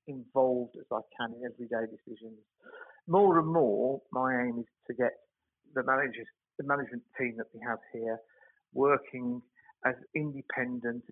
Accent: British